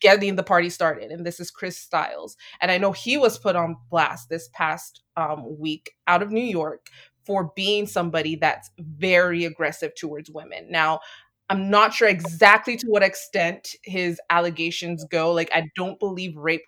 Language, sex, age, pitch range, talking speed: English, female, 20-39, 165-200 Hz, 175 wpm